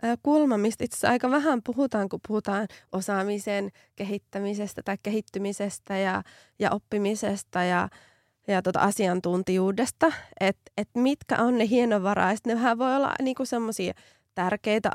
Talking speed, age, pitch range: 130 wpm, 20-39, 195-230 Hz